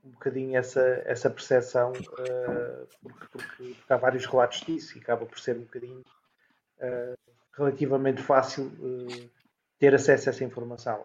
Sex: male